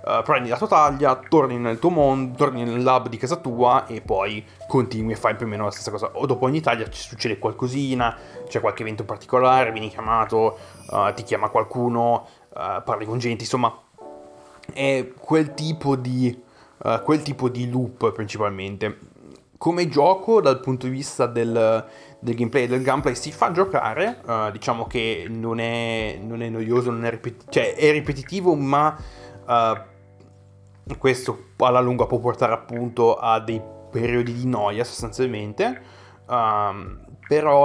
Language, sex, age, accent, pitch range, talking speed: Italian, male, 20-39, native, 110-130 Hz, 165 wpm